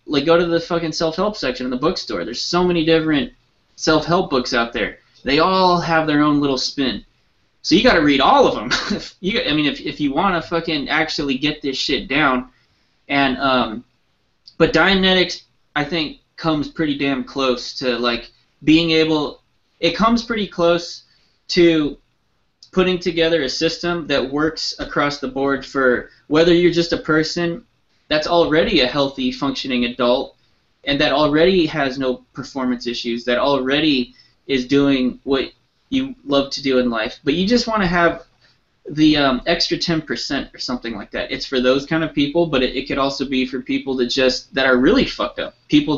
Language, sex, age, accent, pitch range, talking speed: English, male, 20-39, American, 130-165 Hz, 185 wpm